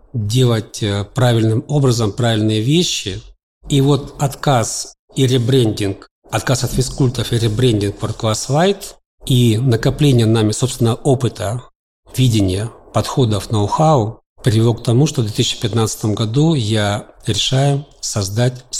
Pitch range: 110-135 Hz